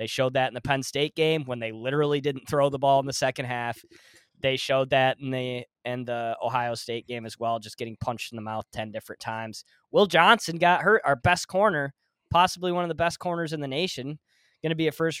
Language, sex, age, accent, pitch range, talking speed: English, male, 20-39, American, 120-170 Hz, 240 wpm